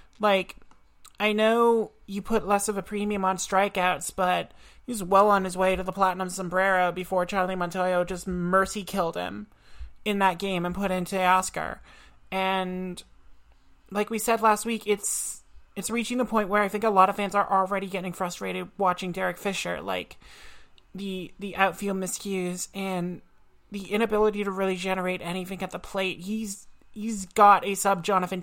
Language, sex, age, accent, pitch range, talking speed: English, male, 30-49, American, 180-200 Hz, 170 wpm